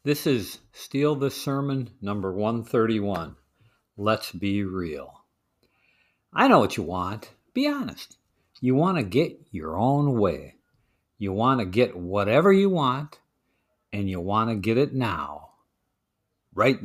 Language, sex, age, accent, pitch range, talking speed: English, male, 50-69, American, 105-145 Hz, 140 wpm